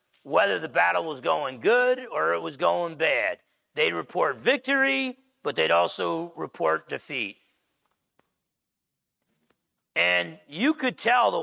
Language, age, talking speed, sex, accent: English, 40-59, 125 wpm, male, American